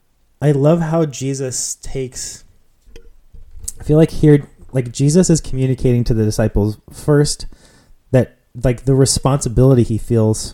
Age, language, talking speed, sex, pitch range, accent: 30-49, English, 130 wpm, male, 105-135 Hz, American